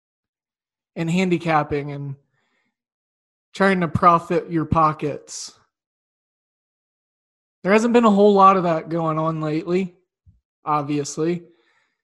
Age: 20-39